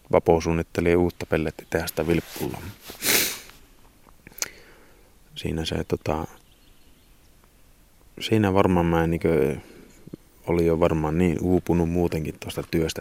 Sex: male